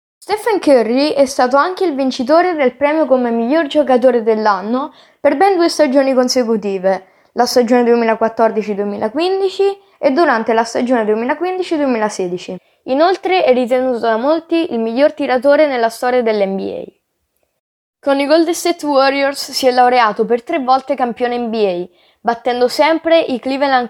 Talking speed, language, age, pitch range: 135 wpm, Italian, 10-29, 225-290 Hz